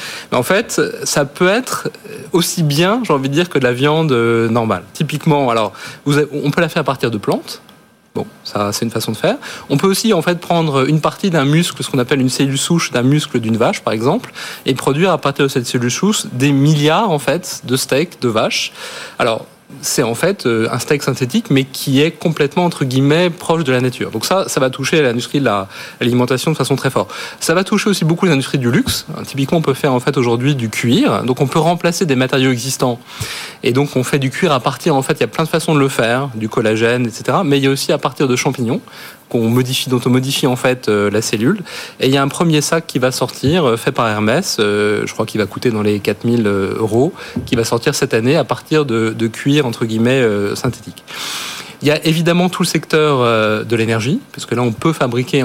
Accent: French